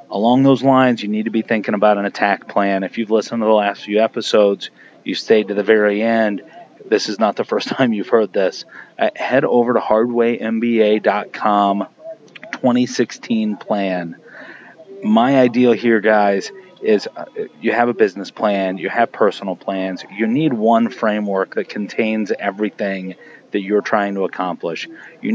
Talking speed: 160 wpm